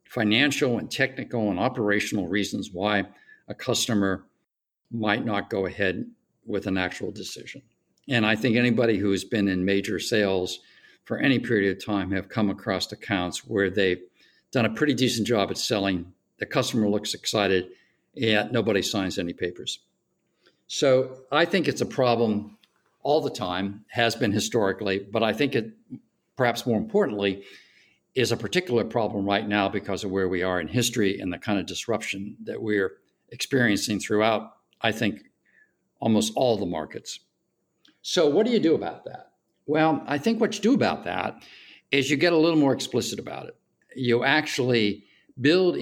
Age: 60-79